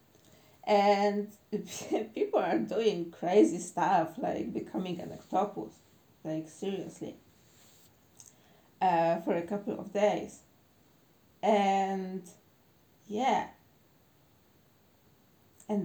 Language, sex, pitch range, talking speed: English, female, 175-215 Hz, 80 wpm